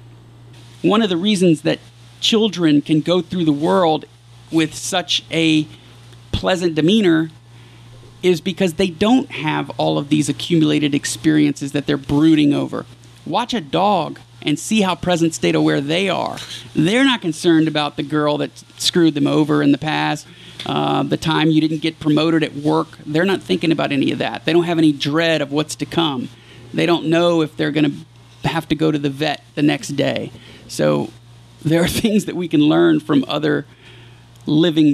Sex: male